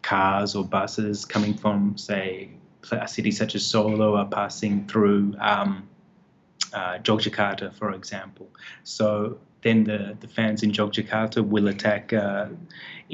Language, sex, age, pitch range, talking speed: English, male, 20-39, 105-120 Hz, 130 wpm